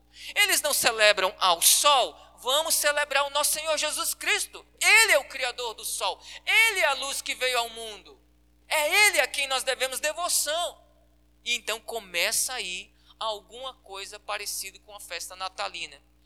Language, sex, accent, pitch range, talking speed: Portuguese, male, Brazilian, 175-275 Hz, 160 wpm